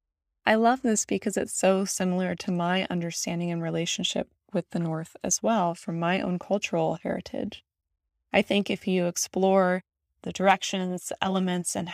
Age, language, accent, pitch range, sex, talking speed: 20-39, English, American, 170-200 Hz, female, 155 wpm